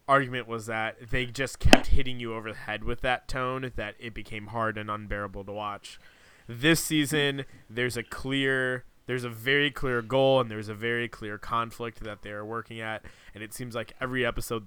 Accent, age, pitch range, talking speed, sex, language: American, 20-39, 105-130 Hz, 195 wpm, male, English